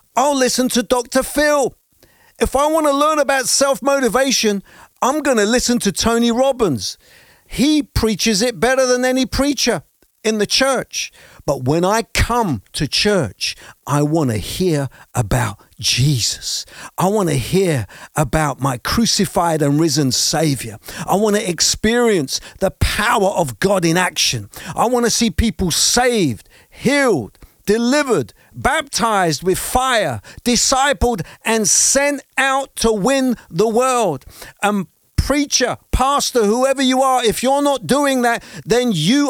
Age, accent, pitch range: 50-69, British, 190-265 Hz